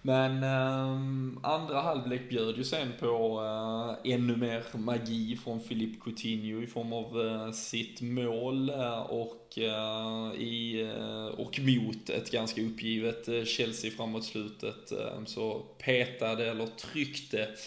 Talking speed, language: 135 wpm, Swedish